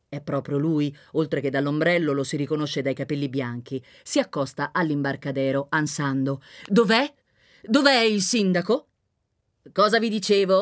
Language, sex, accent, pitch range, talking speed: Italian, female, native, 130-205 Hz, 130 wpm